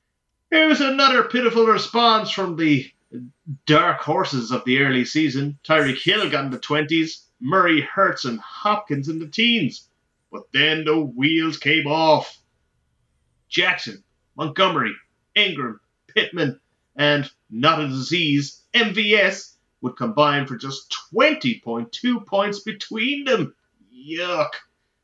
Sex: male